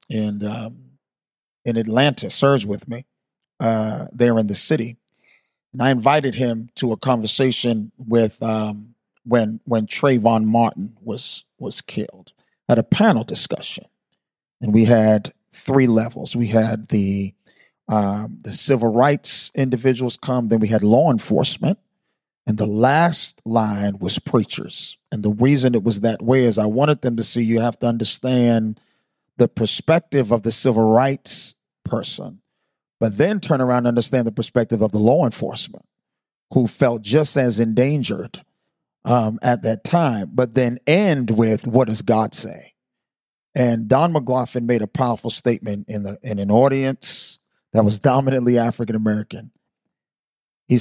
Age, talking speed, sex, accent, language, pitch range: 40-59, 150 wpm, male, American, English, 110-130 Hz